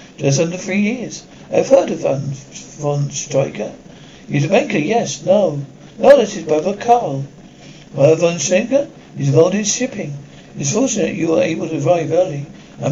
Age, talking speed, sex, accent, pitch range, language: 60-79, 170 wpm, male, British, 140-185 Hz, English